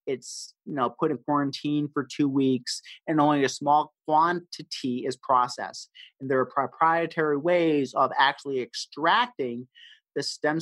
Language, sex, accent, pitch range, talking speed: English, male, American, 140-175 Hz, 135 wpm